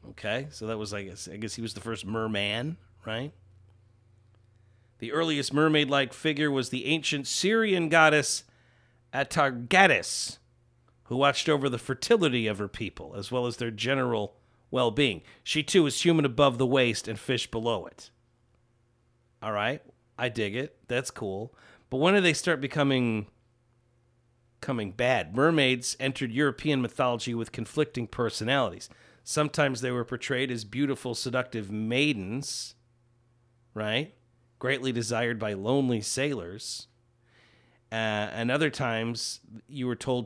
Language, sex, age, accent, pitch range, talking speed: English, male, 40-59, American, 115-135 Hz, 135 wpm